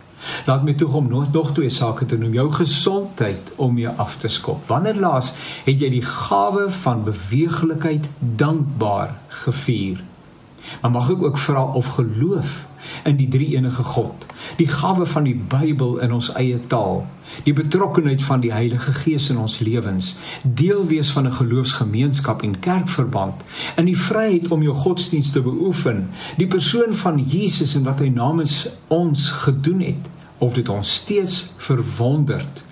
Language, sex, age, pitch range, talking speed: English, male, 50-69, 125-165 Hz, 160 wpm